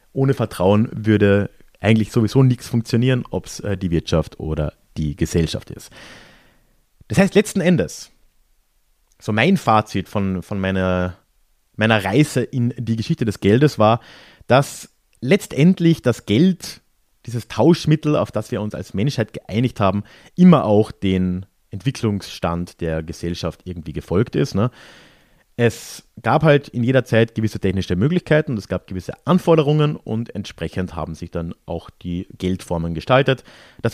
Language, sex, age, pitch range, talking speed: German, male, 30-49, 95-135 Hz, 140 wpm